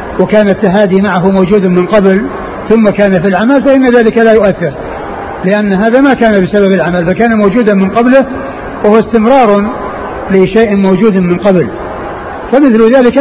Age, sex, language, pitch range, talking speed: 60-79, male, Arabic, 185-220 Hz, 145 wpm